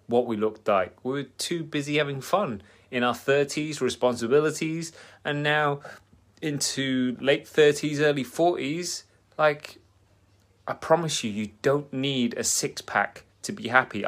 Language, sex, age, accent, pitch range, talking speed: English, male, 30-49, British, 105-140 Hz, 145 wpm